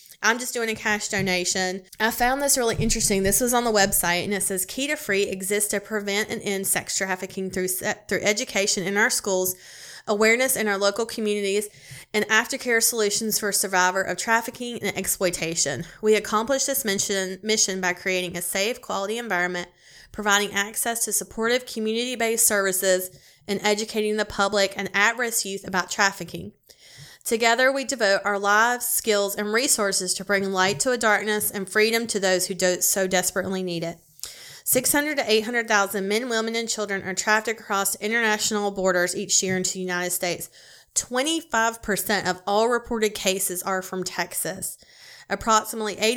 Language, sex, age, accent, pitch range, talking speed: English, female, 30-49, American, 185-220 Hz, 165 wpm